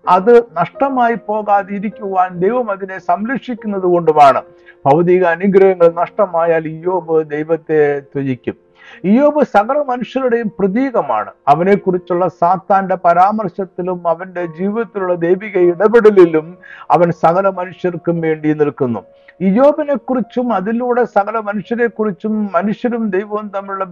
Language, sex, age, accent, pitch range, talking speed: Malayalam, male, 60-79, native, 170-225 Hz, 90 wpm